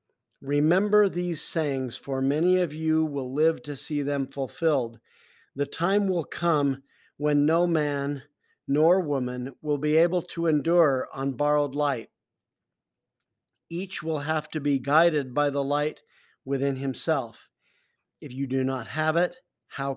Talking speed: 145 wpm